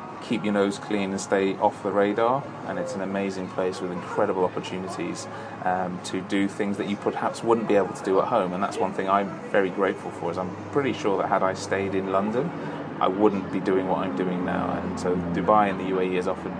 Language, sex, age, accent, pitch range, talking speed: English, male, 30-49, British, 95-105 Hz, 235 wpm